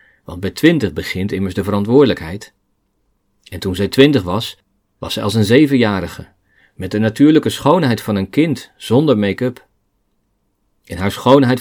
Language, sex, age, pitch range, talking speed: Dutch, male, 40-59, 95-125 Hz, 150 wpm